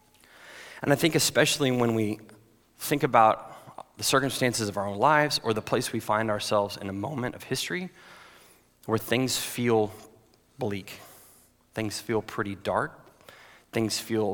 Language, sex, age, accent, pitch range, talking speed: English, male, 30-49, American, 105-125 Hz, 145 wpm